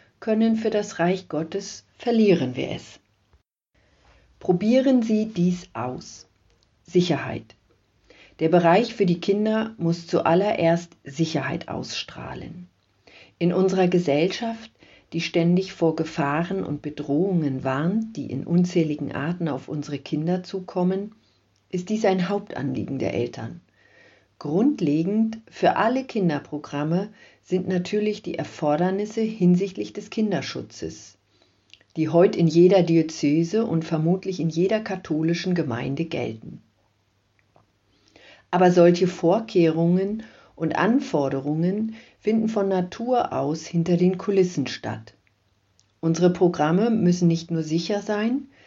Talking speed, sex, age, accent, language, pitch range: 110 wpm, female, 50-69, German, German, 160-200 Hz